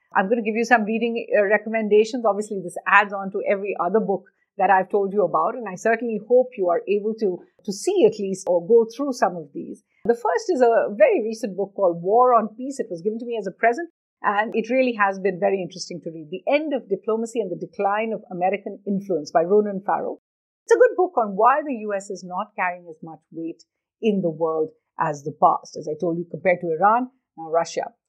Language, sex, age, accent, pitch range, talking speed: English, female, 50-69, Indian, 185-235 Hz, 235 wpm